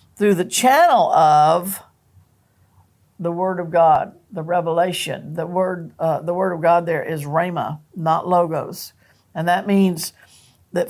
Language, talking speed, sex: English, 145 wpm, female